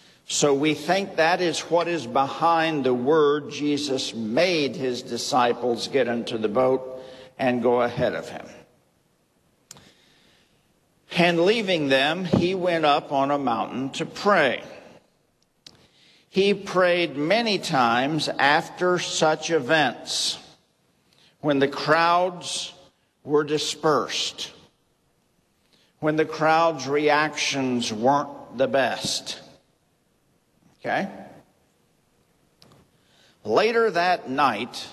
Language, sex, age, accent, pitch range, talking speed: English, male, 50-69, American, 130-175 Hz, 95 wpm